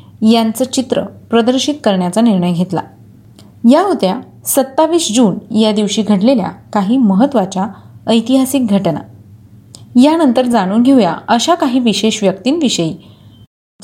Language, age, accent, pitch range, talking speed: Marathi, 30-49, native, 195-255 Hz, 110 wpm